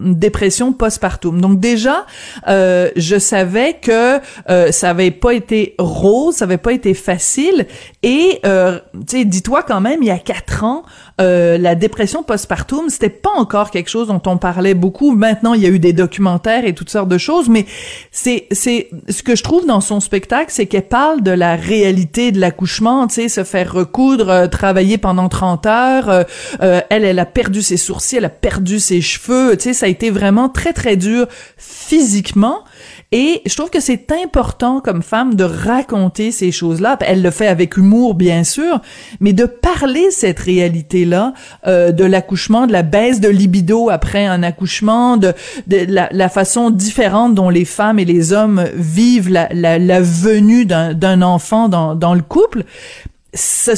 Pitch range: 185-240 Hz